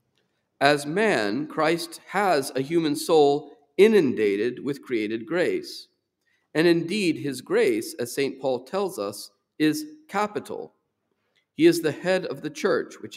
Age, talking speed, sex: 50-69, 135 wpm, male